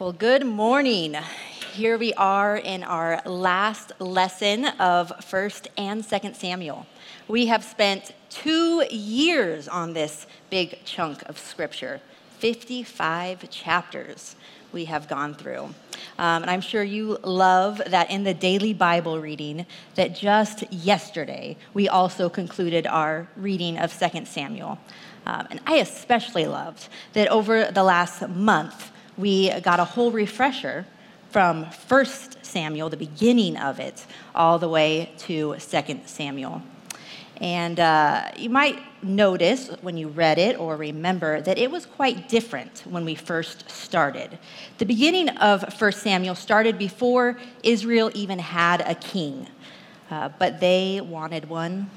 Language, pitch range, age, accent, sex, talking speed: English, 170-220 Hz, 30-49, American, female, 140 wpm